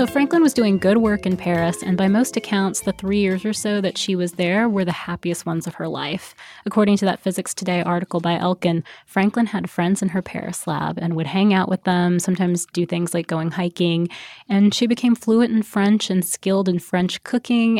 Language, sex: English, female